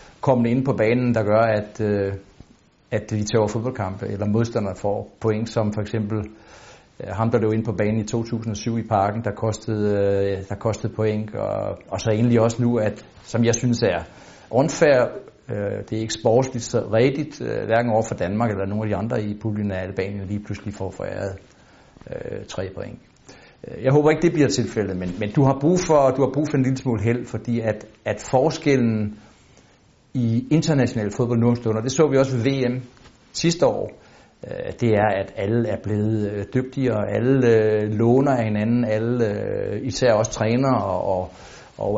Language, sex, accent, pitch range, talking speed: Danish, male, native, 105-125 Hz, 185 wpm